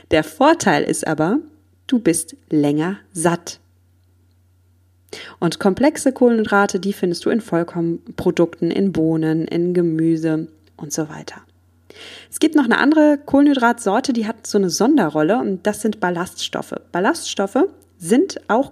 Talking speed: 130 wpm